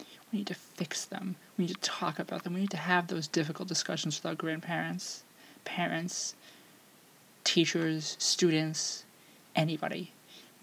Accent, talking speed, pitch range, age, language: American, 145 wpm, 170-200 Hz, 20-39, English